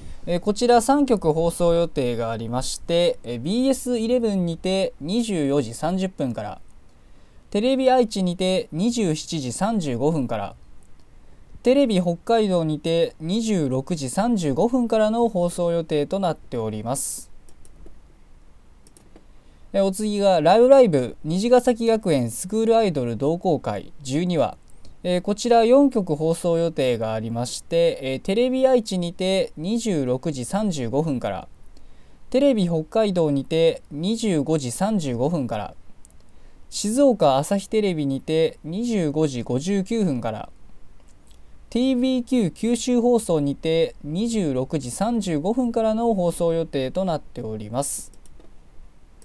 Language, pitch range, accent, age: Japanese, 135-220 Hz, native, 20-39